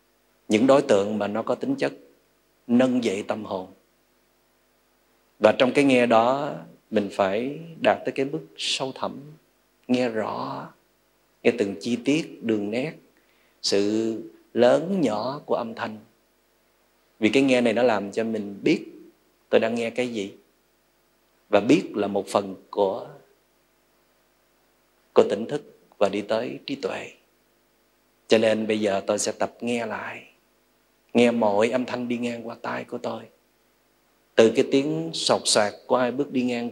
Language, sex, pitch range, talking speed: Vietnamese, male, 105-125 Hz, 155 wpm